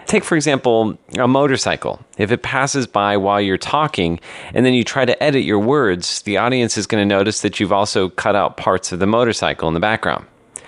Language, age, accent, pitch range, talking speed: English, 30-49, American, 95-130 Hz, 215 wpm